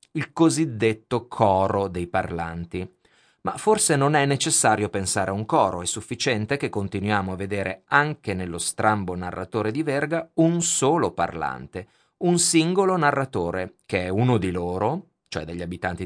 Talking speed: 150 wpm